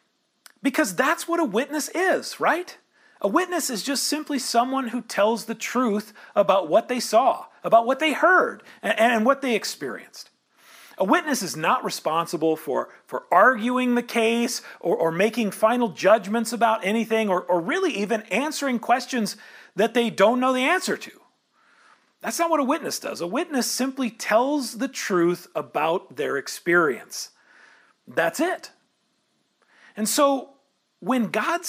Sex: male